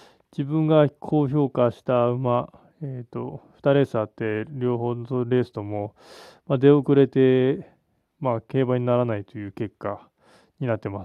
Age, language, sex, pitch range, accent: 20-39, Japanese, male, 120-145 Hz, native